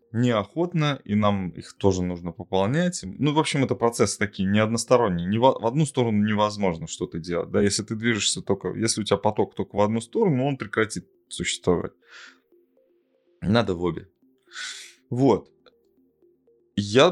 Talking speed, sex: 150 wpm, male